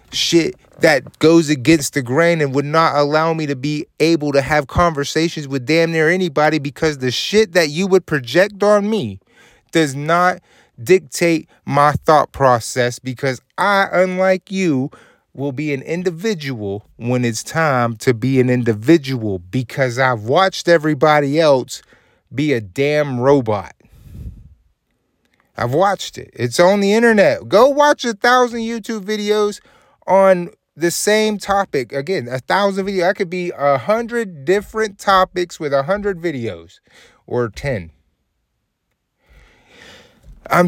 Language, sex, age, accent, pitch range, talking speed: English, male, 30-49, American, 135-185 Hz, 140 wpm